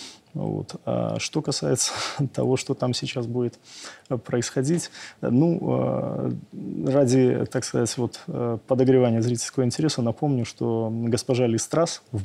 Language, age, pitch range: Russian, 20-39, 110-130 Hz